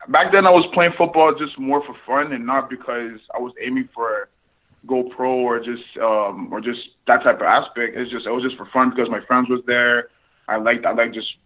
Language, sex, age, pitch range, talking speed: English, male, 20-39, 120-145 Hz, 235 wpm